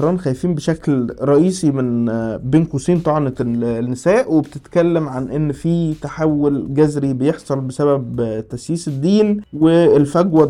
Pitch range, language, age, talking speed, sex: 135-170 Hz, Arabic, 20-39, 110 wpm, male